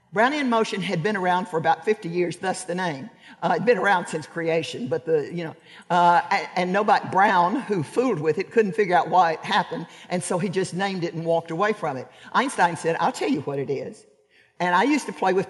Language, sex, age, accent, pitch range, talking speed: English, male, 50-69, American, 170-225 Hz, 240 wpm